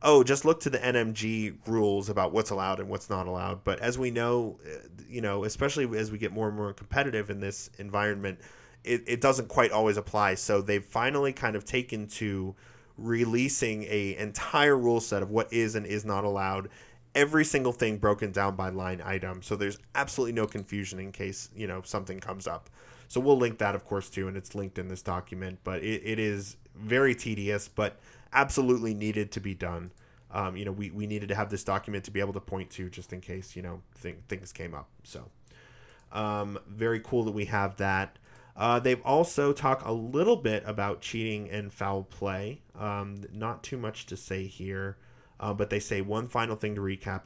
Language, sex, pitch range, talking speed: English, male, 95-115 Hz, 205 wpm